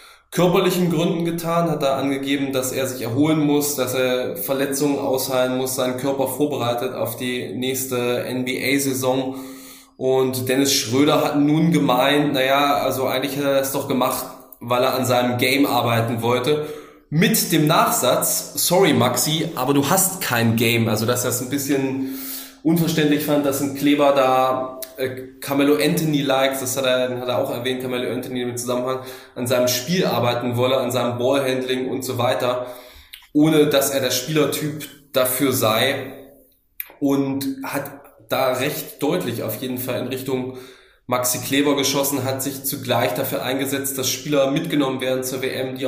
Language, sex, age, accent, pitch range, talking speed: German, male, 20-39, German, 125-140 Hz, 160 wpm